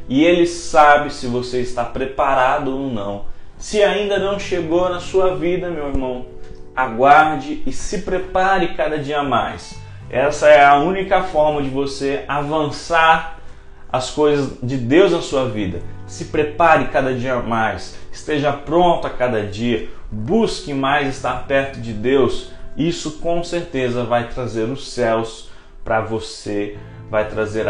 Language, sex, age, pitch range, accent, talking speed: Portuguese, male, 20-39, 110-155 Hz, Brazilian, 150 wpm